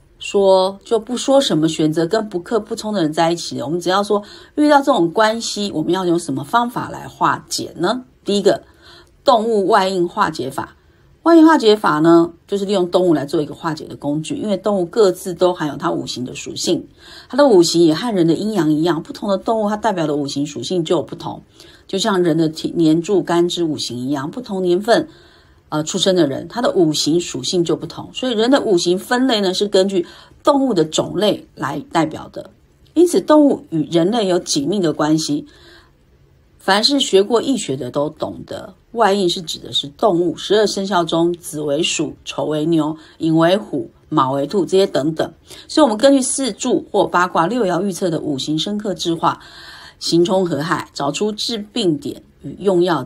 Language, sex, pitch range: Chinese, female, 160-220 Hz